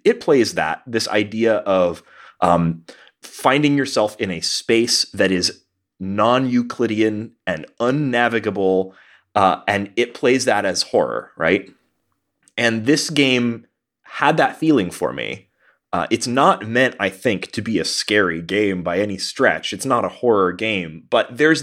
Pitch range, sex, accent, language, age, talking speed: 100-130 Hz, male, American, English, 30-49, 150 wpm